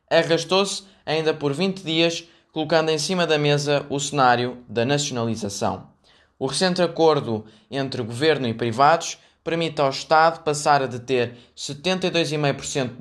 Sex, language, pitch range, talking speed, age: male, Portuguese, 130-165 Hz, 135 wpm, 20-39